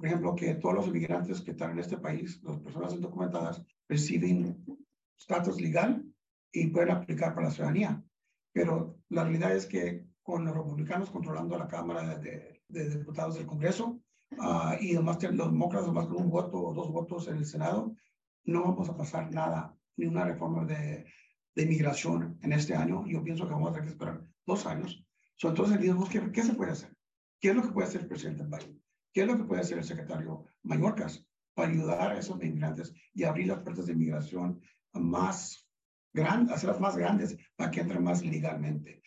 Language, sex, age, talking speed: English, male, 60-79, 195 wpm